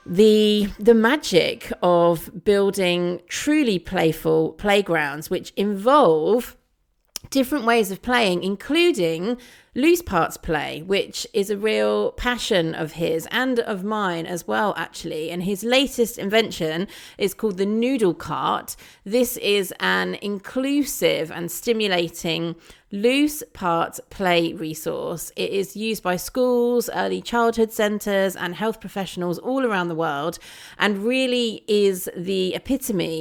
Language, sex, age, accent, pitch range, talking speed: English, female, 30-49, British, 170-235 Hz, 125 wpm